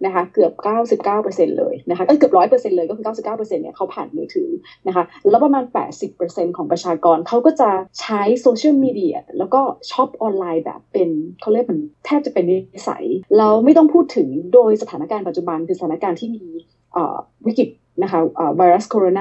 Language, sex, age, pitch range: Thai, female, 20-39, 180-250 Hz